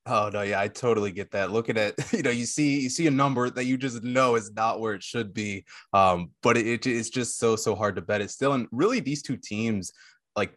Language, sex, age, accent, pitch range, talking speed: English, male, 20-39, American, 100-125 Hz, 255 wpm